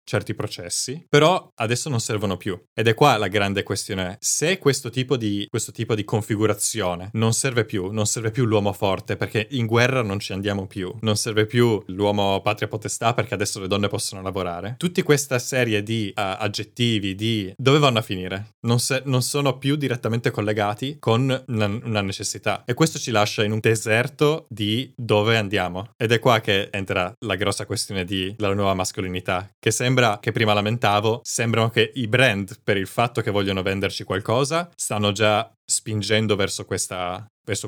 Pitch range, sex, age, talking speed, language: 100-125 Hz, male, 20-39, 180 wpm, Italian